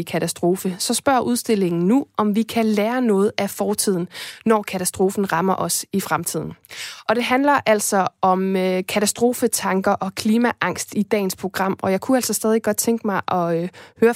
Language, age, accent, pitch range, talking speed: Danish, 20-39, native, 190-225 Hz, 165 wpm